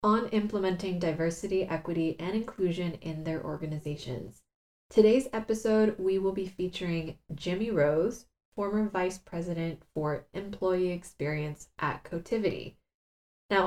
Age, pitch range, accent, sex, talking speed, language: 20-39, 160-195 Hz, American, female, 115 wpm, English